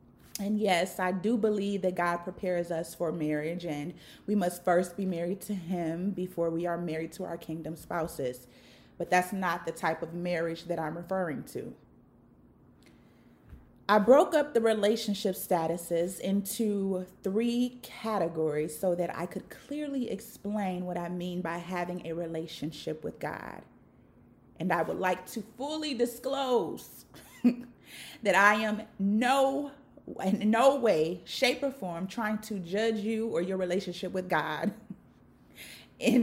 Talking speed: 145 wpm